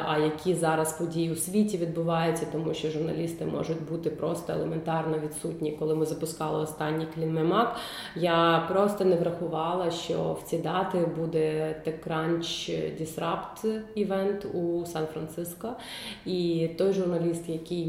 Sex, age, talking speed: female, 20-39, 125 wpm